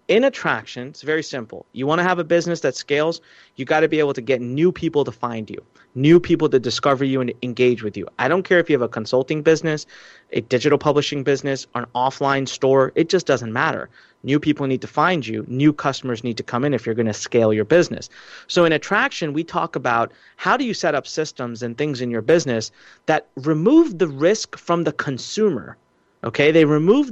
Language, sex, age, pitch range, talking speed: English, male, 30-49, 130-165 Hz, 225 wpm